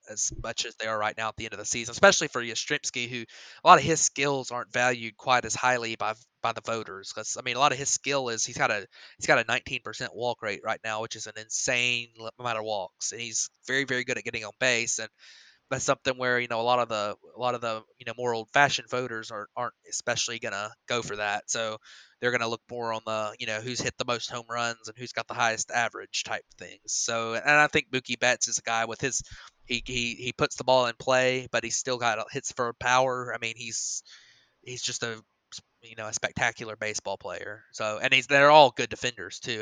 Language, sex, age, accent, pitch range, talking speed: English, male, 20-39, American, 110-130 Hz, 250 wpm